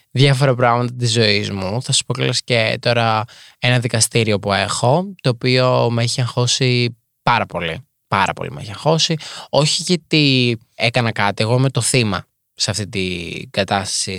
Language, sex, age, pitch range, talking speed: Greek, male, 20-39, 110-155 Hz, 160 wpm